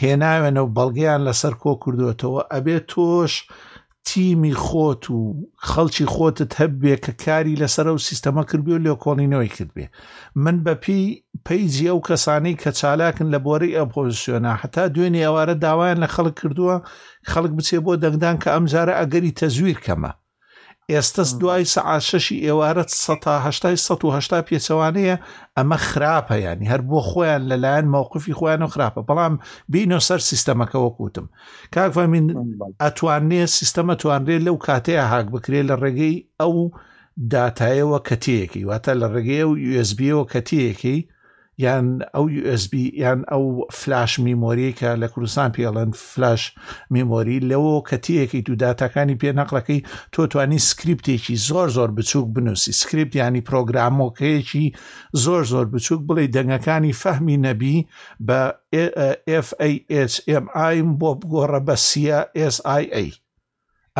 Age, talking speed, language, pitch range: 50-69, 130 wpm, Arabic, 130-160 Hz